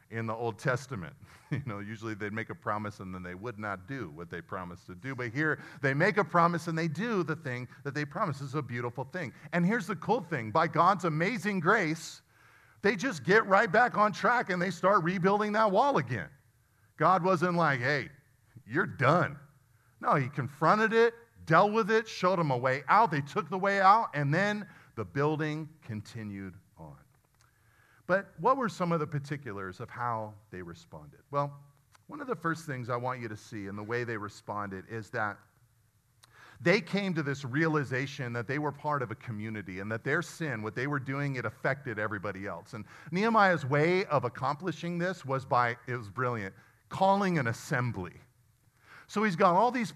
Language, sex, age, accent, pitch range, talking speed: English, male, 40-59, American, 120-180 Hz, 195 wpm